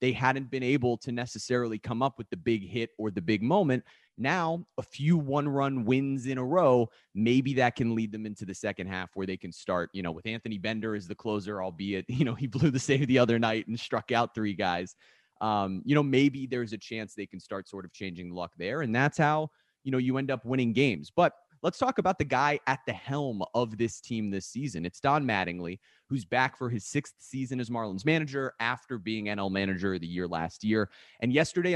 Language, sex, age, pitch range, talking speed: English, male, 30-49, 100-130 Hz, 230 wpm